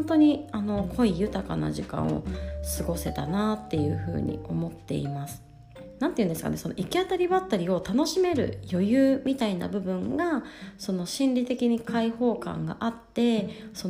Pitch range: 170-270 Hz